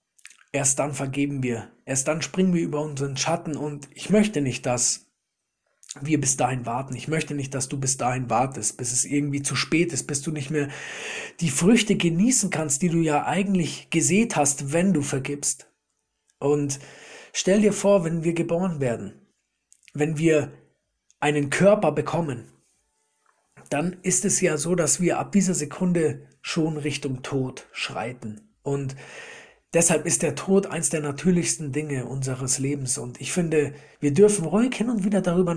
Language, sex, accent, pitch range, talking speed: German, male, German, 140-180 Hz, 165 wpm